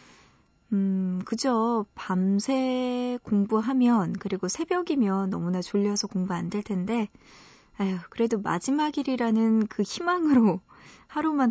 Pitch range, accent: 190-255 Hz, native